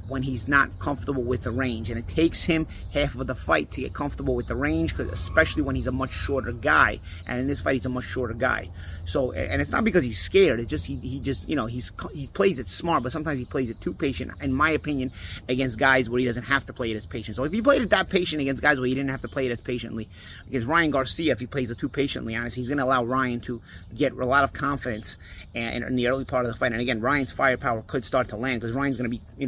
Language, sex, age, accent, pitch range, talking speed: English, male, 30-49, American, 115-135 Hz, 285 wpm